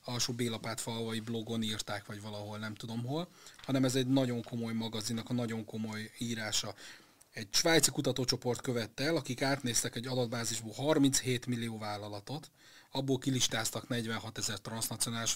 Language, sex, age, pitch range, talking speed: Hungarian, male, 30-49, 115-135 Hz, 140 wpm